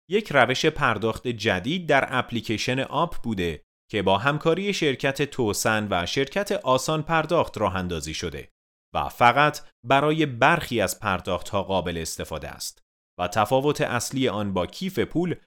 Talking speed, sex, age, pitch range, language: 145 wpm, male, 30-49, 100-150 Hz, Persian